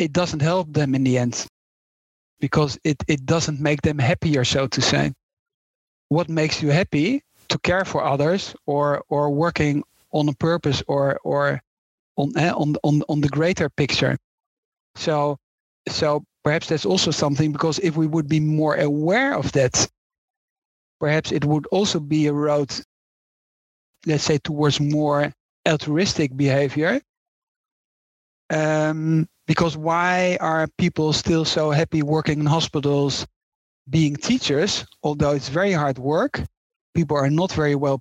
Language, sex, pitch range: English, male, 145-165 Hz